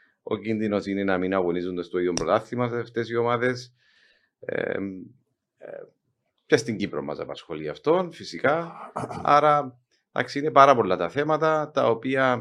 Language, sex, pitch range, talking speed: Greek, male, 90-120 Hz, 150 wpm